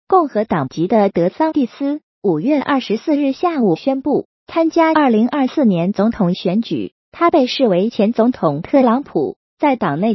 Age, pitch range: 30-49, 205-300 Hz